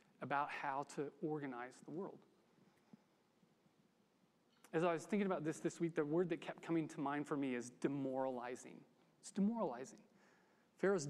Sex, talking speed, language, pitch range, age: male, 150 wpm, English, 160-215 Hz, 30-49